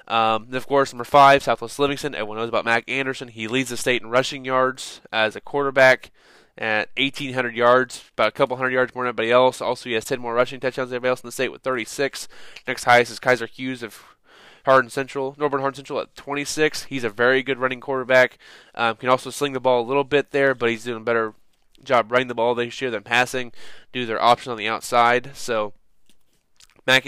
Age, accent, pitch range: 20-39, American, 120-140 Hz